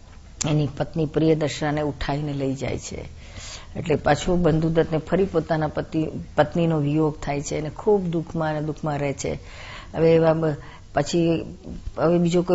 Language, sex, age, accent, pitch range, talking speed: Gujarati, female, 50-69, native, 145-160 Hz, 60 wpm